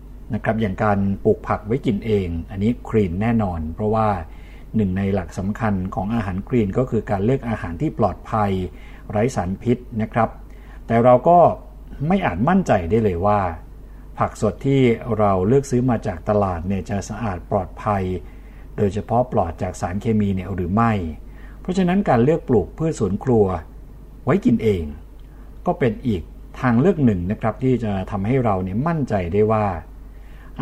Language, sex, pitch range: Thai, male, 100-125 Hz